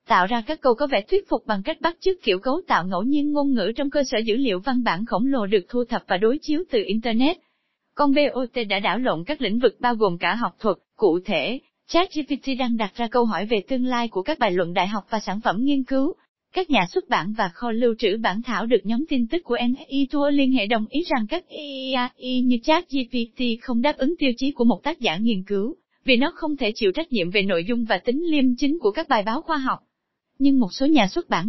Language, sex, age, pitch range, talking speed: Vietnamese, female, 20-39, 210-280 Hz, 255 wpm